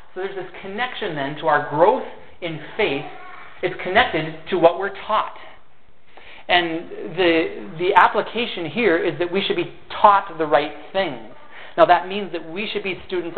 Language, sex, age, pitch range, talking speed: English, male, 30-49, 160-205 Hz, 170 wpm